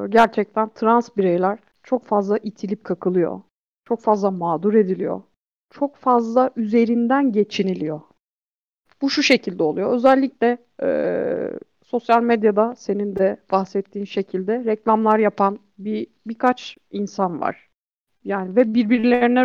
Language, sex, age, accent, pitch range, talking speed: Turkish, female, 50-69, native, 205-245 Hz, 110 wpm